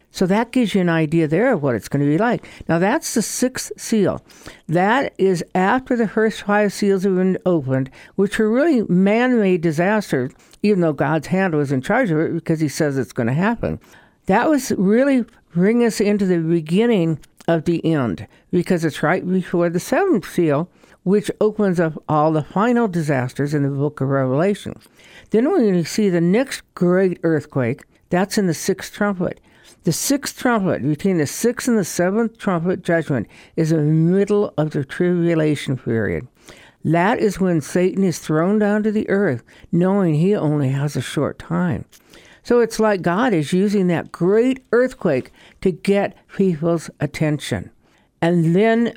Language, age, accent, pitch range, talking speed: English, 60-79, American, 155-210 Hz, 180 wpm